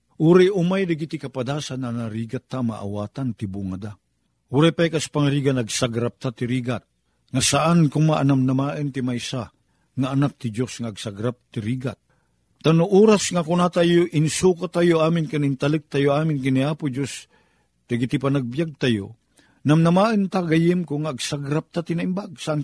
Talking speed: 140 wpm